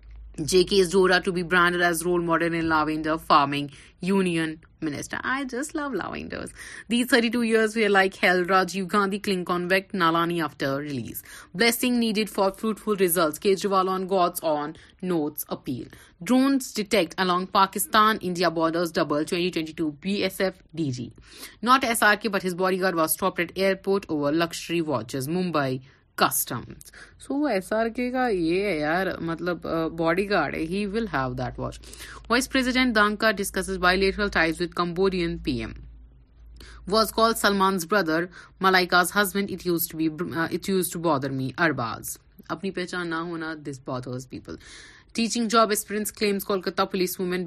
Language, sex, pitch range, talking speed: Urdu, female, 160-200 Hz, 105 wpm